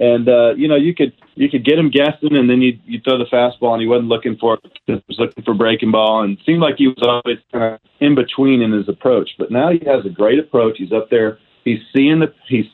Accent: American